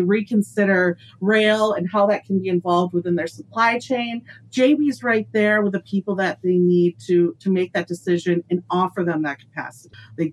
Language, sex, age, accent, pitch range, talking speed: English, female, 30-49, American, 170-215 Hz, 185 wpm